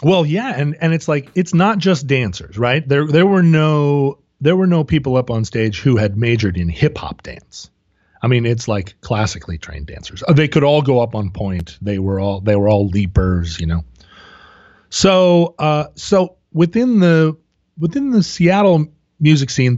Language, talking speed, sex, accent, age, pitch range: English, 190 wpm, male, American, 30-49, 105-155 Hz